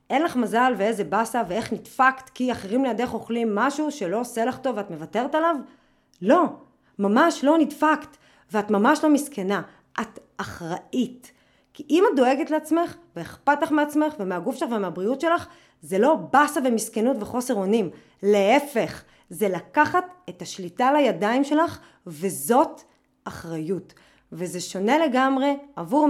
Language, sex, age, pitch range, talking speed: Hebrew, female, 30-49, 200-280 Hz, 140 wpm